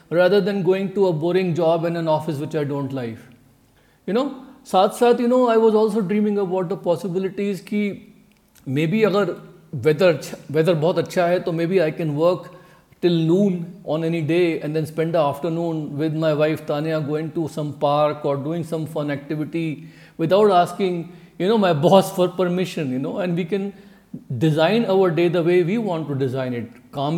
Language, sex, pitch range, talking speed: Punjabi, male, 155-200 Hz, 190 wpm